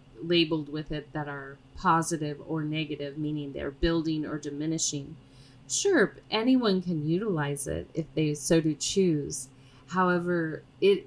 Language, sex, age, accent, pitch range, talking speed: English, female, 30-49, American, 140-165 Hz, 135 wpm